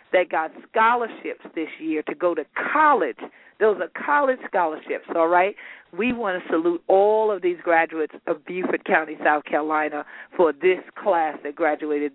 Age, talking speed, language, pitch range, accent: 40-59, 165 wpm, English, 155-195 Hz, American